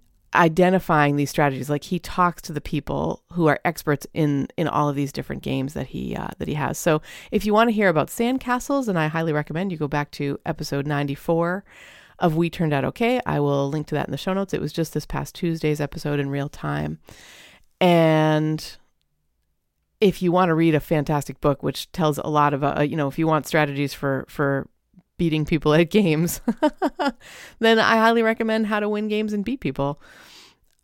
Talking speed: 205 wpm